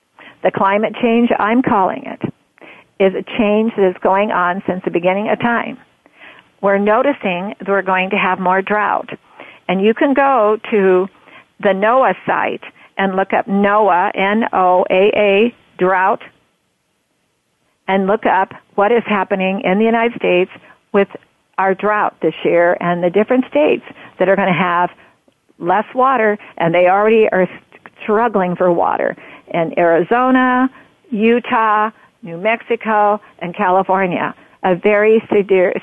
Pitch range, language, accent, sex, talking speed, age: 185-220 Hz, English, American, female, 140 wpm, 50-69